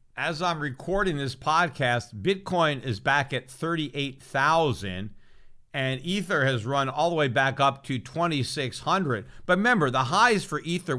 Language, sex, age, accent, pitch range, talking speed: English, male, 50-69, American, 130-170 Hz, 145 wpm